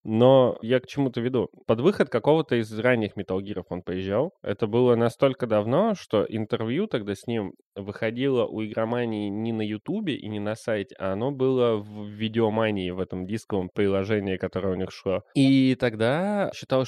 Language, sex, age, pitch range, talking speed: Russian, male, 20-39, 105-130 Hz, 170 wpm